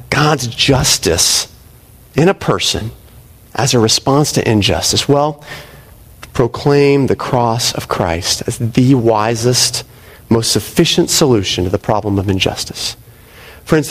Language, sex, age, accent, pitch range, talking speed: English, male, 40-59, American, 115-180 Hz, 120 wpm